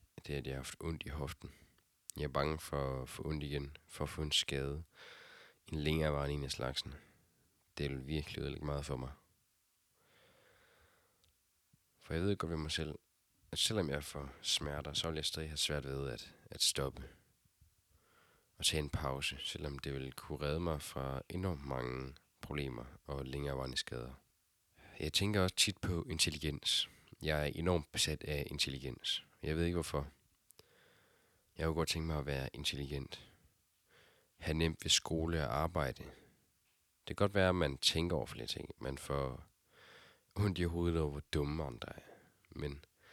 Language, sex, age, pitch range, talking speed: Danish, male, 20-39, 70-80 Hz, 170 wpm